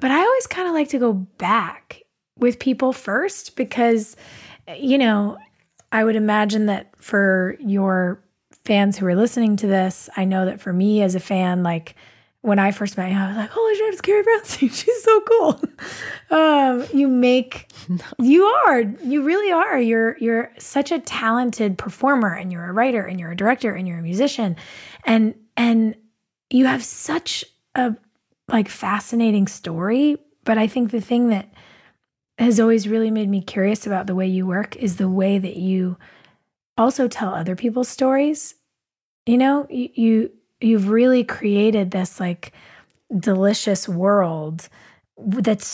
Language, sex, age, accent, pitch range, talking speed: English, female, 20-39, American, 195-250 Hz, 170 wpm